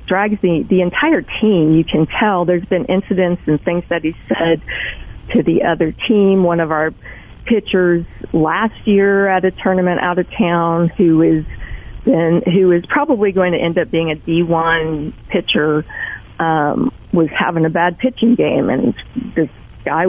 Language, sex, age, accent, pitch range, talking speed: English, female, 40-59, American, 160-185 Hz, 170 wpm